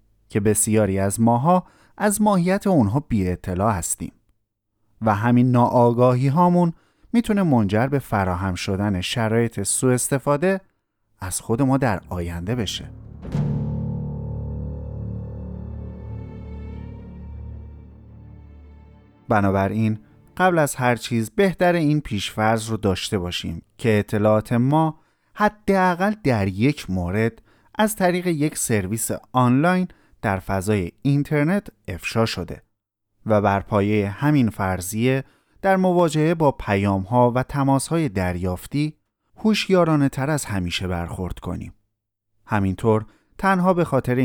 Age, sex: 30-49, male